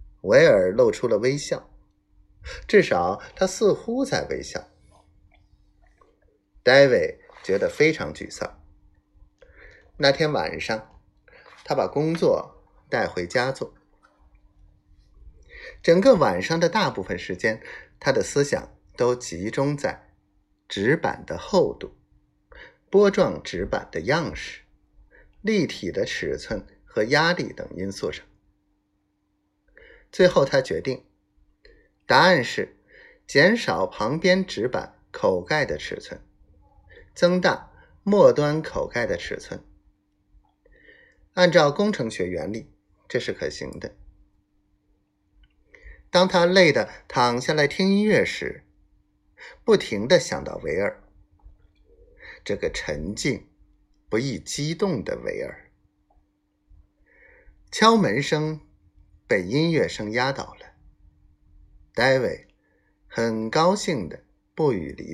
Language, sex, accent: Chinese, male, native